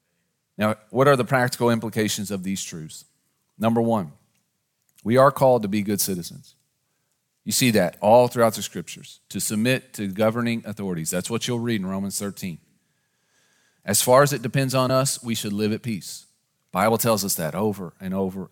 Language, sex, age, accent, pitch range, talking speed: English, male, 40-59, American, 105-130 Hz, 185 wpm